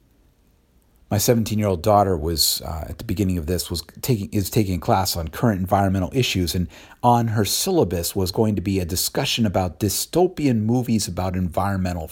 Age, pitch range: 50-69, 85-110 Hz